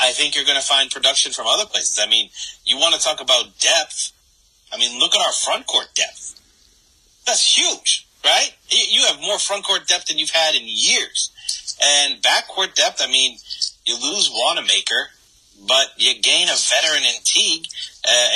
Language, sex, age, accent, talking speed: English, male, 30-49, American, 185 wpm